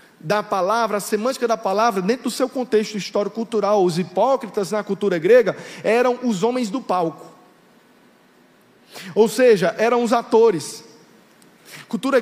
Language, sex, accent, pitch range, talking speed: Portuguese, male, Brazilian, 210-265 Hz, 140 wpm